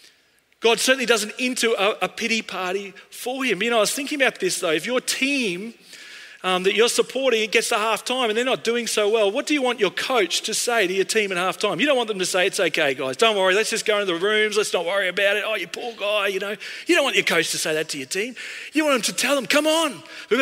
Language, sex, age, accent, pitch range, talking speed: English, male, 40-59, Australian, 195-240 Hz, 280 wpm